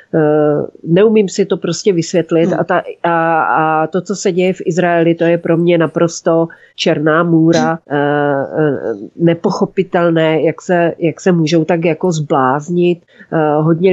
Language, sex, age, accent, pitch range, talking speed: Czech, female, 40-59, native, 160-175 Hz, 125 wpm